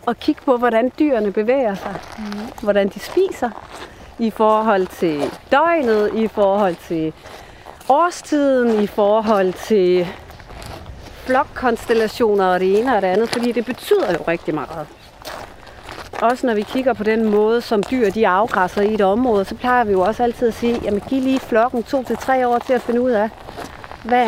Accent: native